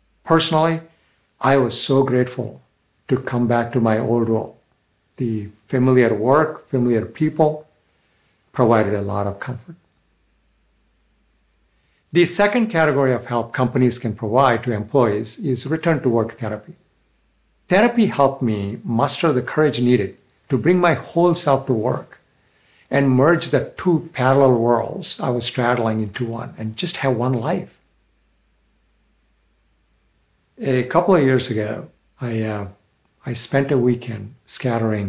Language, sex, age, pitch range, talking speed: Arabic, male, 60-79, 110-140 Hz, 135 wpm